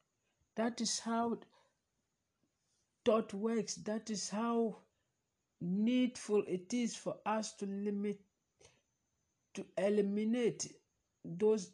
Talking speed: 90 wpm